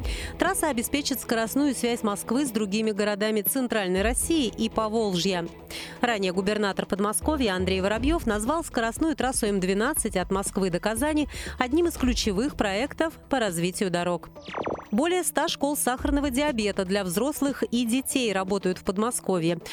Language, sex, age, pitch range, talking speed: Russian, female, 30-49, 195-265 Hz, 135 wpm